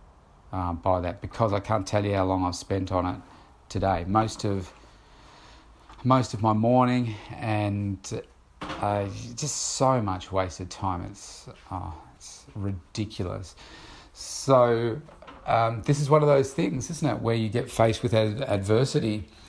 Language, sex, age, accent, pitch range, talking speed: English, male, 40-59, Australian, 95-115 Hz, 140 wpm